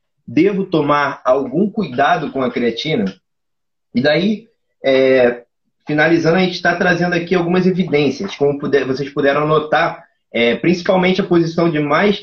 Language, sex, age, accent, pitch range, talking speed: Portuguese, male, 20-39, Brazilian, 135-175 Hz, 140 wpm